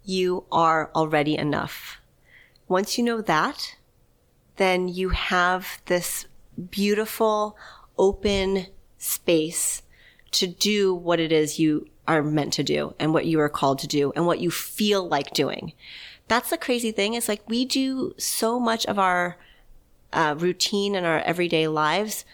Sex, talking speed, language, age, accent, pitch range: female, 150 wpm, English, 30-49, American, 170-235 Hz